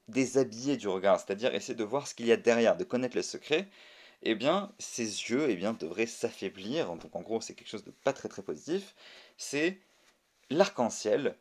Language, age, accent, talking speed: French, 30-49, French, 200 wpm